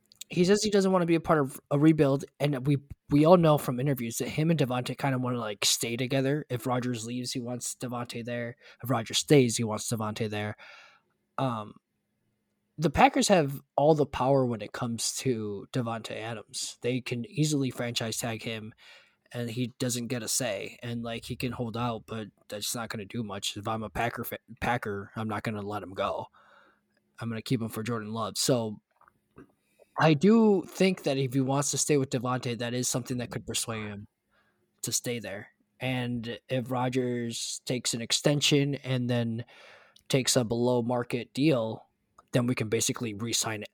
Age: 20-39